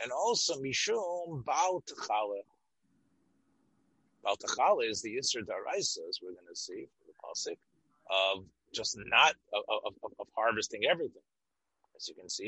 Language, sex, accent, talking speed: English, male, American, 135 wpm